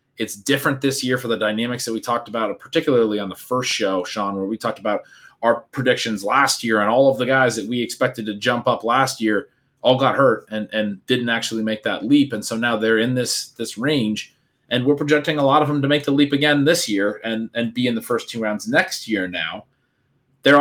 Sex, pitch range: male, 110-140 Hz